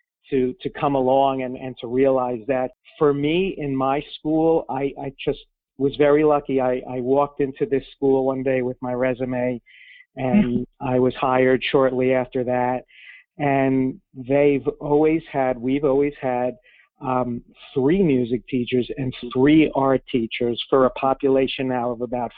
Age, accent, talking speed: 50-69, American, 160 wpm